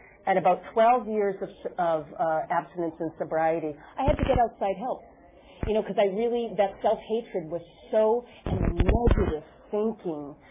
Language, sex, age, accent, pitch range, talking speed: English, female, 40-59, American, 175-220 Hz, 160 wpm